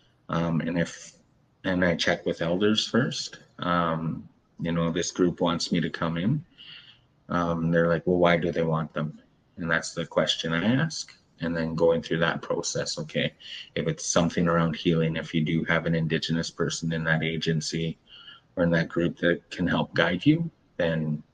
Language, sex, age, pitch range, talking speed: English, male, 30-49, 80-85 Hz, 185 wpm